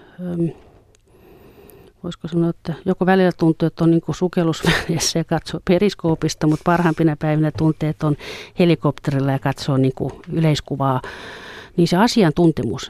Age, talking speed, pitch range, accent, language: 40-59, 125 wpm, 150-175 Hz, native, Finnish